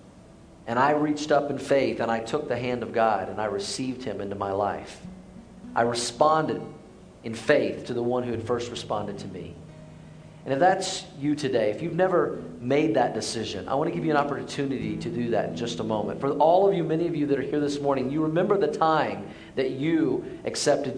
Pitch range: 120-150 Hz